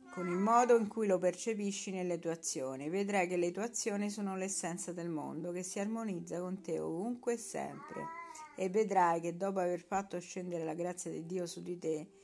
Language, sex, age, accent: Italian, female, 50-69, native